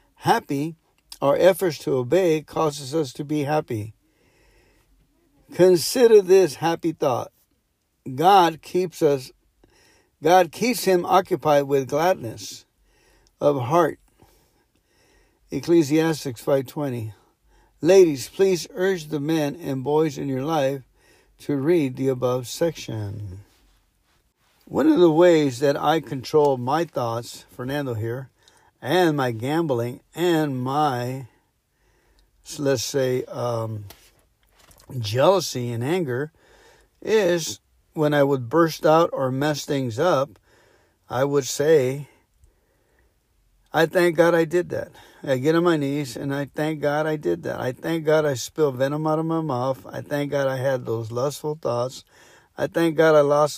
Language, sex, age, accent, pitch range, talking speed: English, male, 60-79, American, 130-165 Hz, 130 wpm